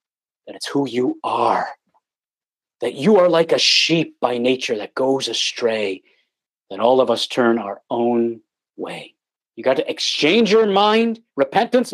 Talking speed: 155 wpm